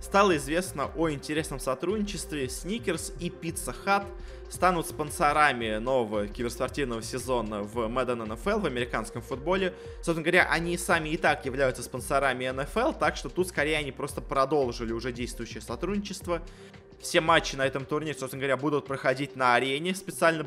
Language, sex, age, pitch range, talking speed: Russian, male, 20-39, 130-170 Hz, 150 wpm